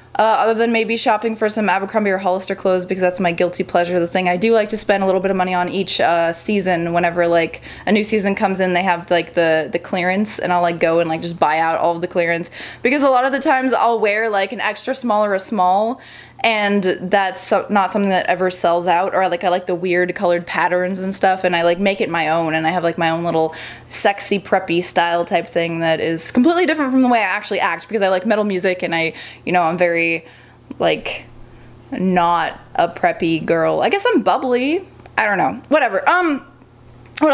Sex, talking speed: female, 235 wpm